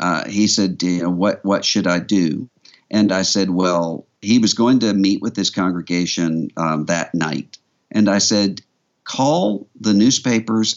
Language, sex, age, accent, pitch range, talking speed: English, male, 50-69, American, 85-105 Hz, 160 wpm